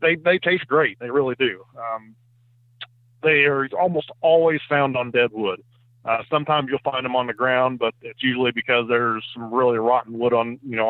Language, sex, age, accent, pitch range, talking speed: English, male, 40-59, American, 110-125 Hz, 200 wpm